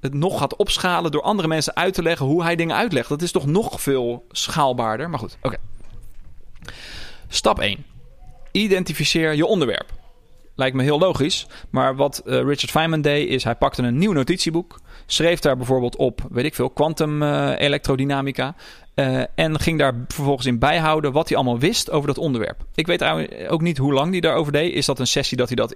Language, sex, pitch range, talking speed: Dutch, male, 115-150 Hz, 195 wpm